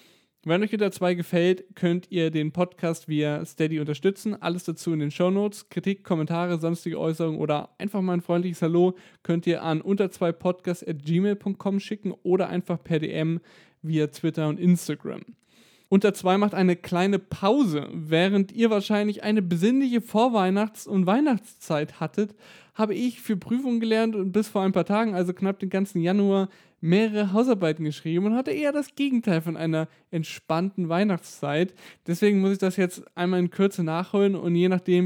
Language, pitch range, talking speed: German, 165-205 Hz, 160 wpm